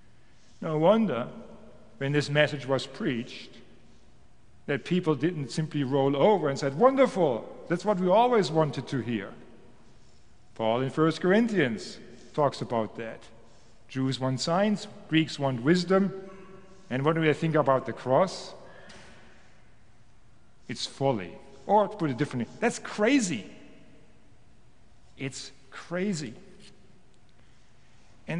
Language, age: English, 50-69